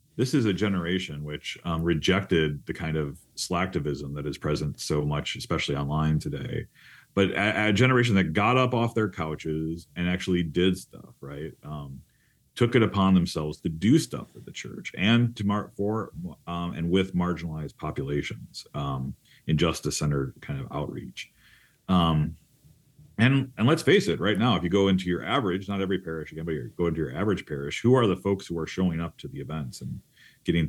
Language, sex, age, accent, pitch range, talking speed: English, male, 40-59, American, 75-100 Hz, 190 wpm